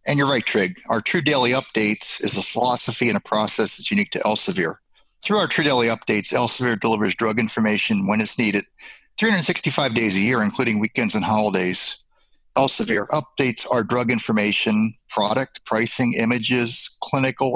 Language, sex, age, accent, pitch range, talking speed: English, male, 40-59, American, 110-150 Hz, 160 wpm